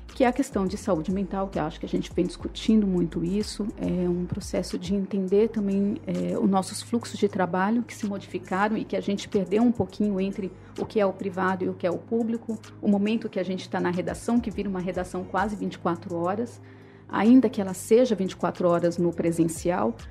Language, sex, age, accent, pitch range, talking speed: English, female, 40-59, Brazilian, 180-220 Hz, 220 wpm